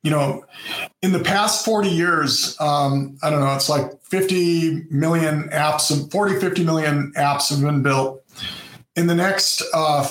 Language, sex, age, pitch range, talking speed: English, male, 40-59, 140-175 Hz, 165 wpm